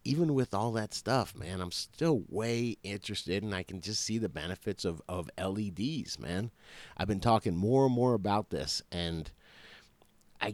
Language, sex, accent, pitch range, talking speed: English, male, American, 90-115 Hz, 175 wpm